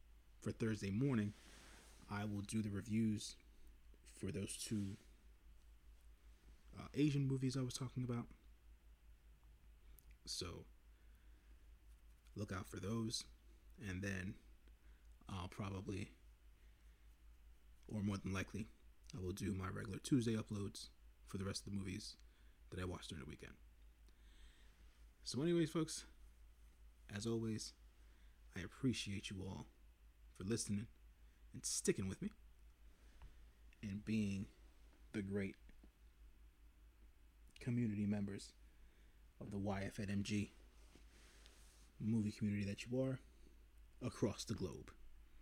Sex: male